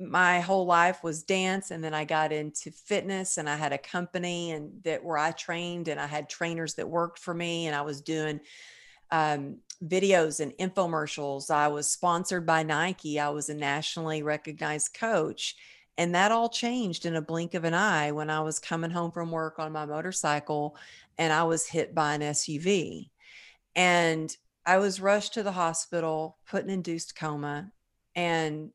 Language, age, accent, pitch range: English, 50-69, American, 150-175 Hz